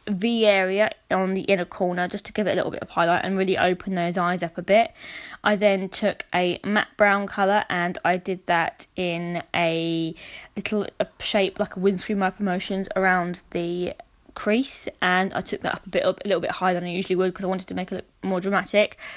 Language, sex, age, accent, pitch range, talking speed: English, female, 20-39, British, 180-210 Hz, 220 wpm